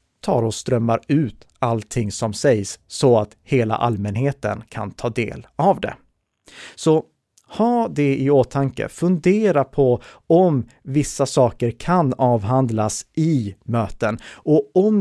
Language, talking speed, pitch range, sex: Swedish, 130 wpm, 115-135 Hz, male